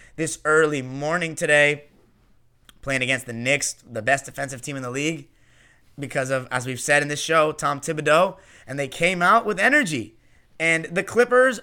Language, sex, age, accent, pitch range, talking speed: English, male, 30-49, American, 145-180 Hz, 175 wpm